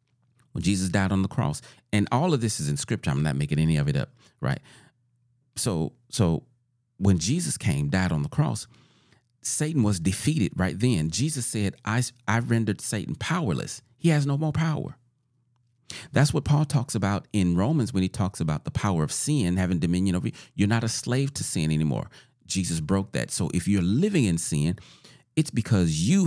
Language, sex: English, male